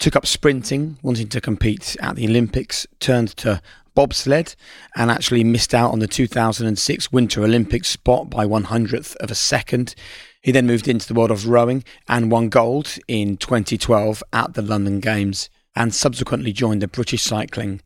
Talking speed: 170 wpm